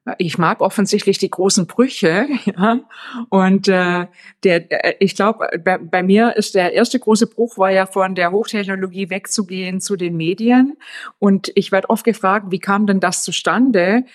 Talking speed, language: 165 wpm, German